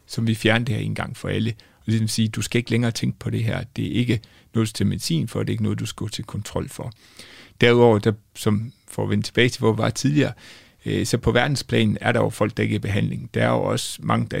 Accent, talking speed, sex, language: native, 280 wpm, male, Danish